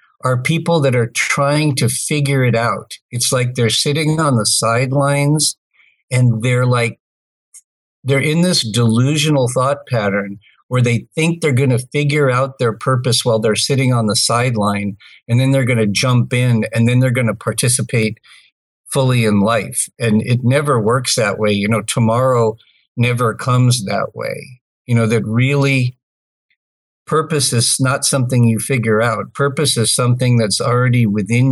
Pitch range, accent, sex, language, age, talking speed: 110-130 Hz, American, male, English, 50-69, 165 wpm